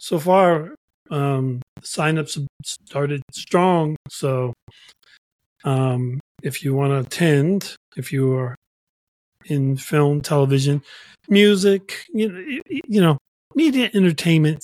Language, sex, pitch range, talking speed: English, male, 135-165 Hz, 105 wpm